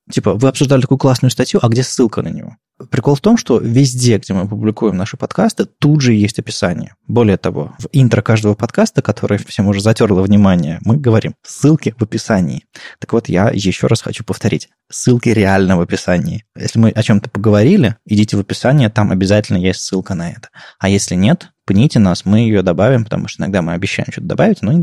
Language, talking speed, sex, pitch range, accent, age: Russian, 200 wpm, male, 100-130 Hz, native, 20-39